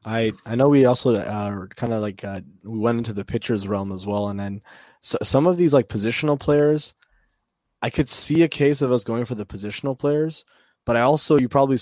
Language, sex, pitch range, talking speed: English, male, 100-120 Hz, 215 wpm